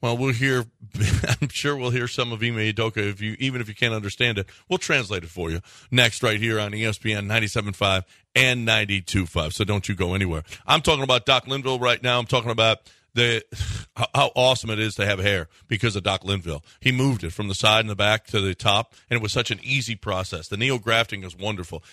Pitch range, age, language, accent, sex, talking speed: 105-135 Hz, 40-59, English, American, male, 225 wpm